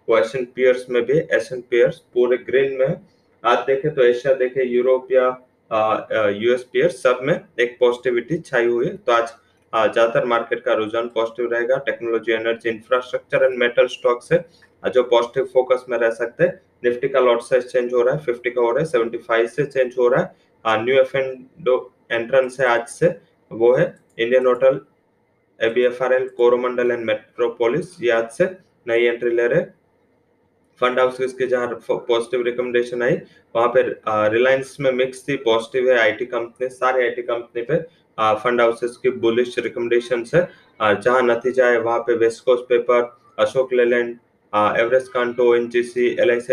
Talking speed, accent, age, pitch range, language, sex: 125 wpm, Indian, 20-39, 120-130 Hz, English, male